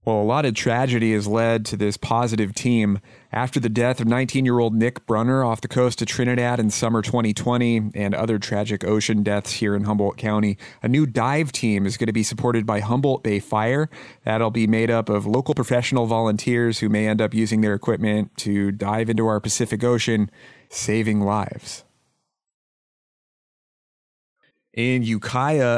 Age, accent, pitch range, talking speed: 30-49, American, 110-125 Hz, 175 wpm